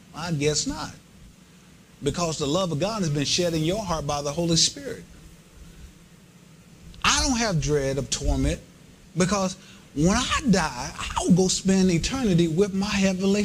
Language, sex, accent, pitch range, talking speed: English, male, American, 145-185 Hz, 160 wpm